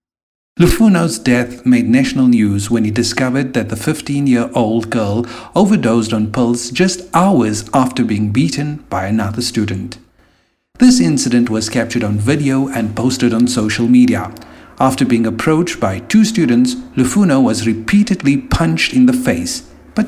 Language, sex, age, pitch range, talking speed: English, male, 50-69, 115-155 Hz, 145 wpm